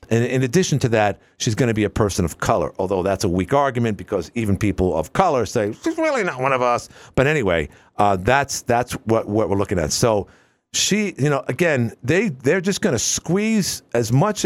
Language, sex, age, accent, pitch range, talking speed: English, male, 50-69, American, 105-140 Hz, 220 wpm